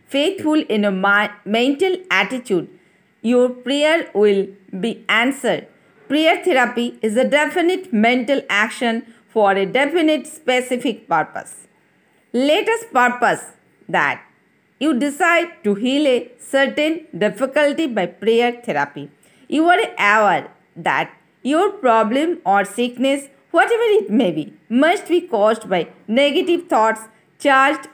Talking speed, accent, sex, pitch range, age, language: 120 wpm, native, female, 210-300 Hz, 50-69, Hindi